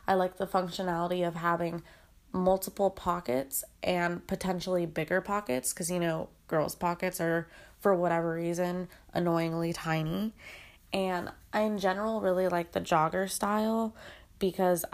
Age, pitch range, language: 20-39, 170-205 Hz, English